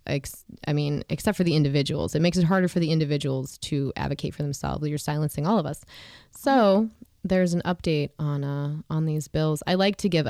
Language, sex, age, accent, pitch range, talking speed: English, female, 20-39, American, 150-170 Hz, 205 wpm